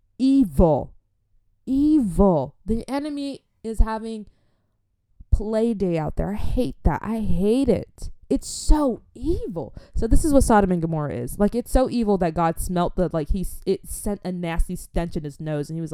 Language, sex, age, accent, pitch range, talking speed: English, female, 20-39, American, 140-220 Hz, 180 wpm